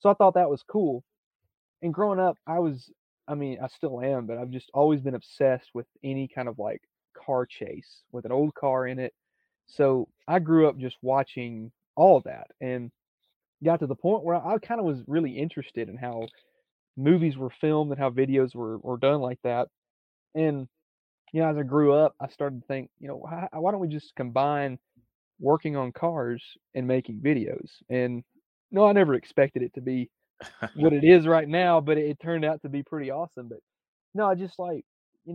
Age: 30-49